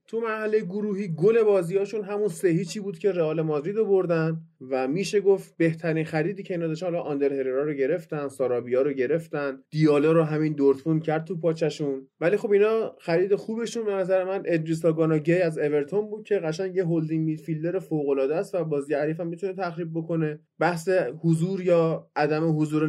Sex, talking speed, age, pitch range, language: male, 175 wpm, 20-39, 150-200 Hz, Persian